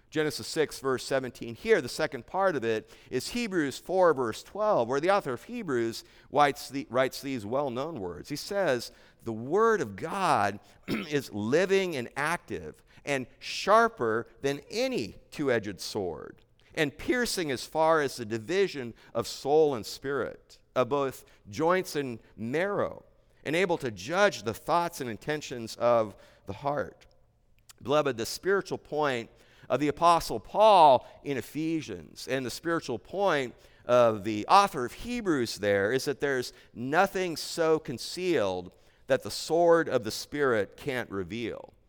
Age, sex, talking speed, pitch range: 50-69, male, 145 wpm, 115-165 Hz